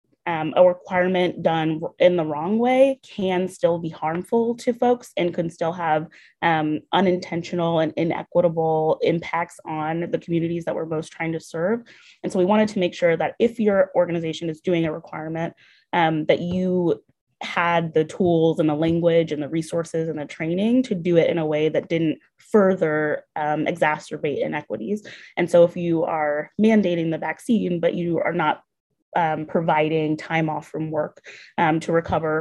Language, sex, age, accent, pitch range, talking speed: English, female, 20-39, American, 155-180 Hz, 175 wpm